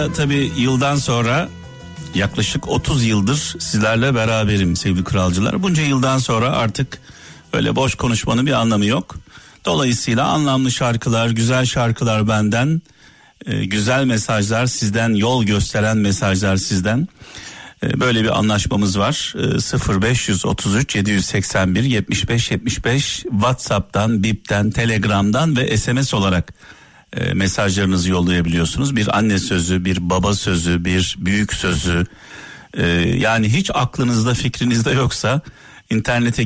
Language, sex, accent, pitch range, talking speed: Turkish, male, native, 100-130 Hz, 105 wpm